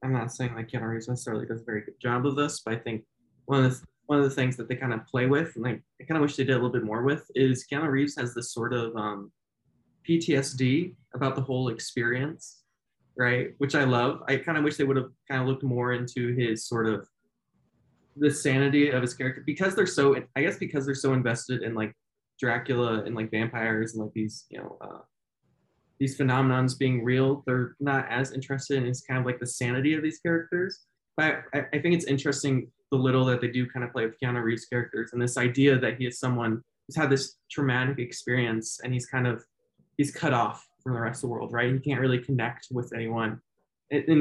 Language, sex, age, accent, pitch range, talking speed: English, male, 20-39, American, 120-135 Hz, 225 wpm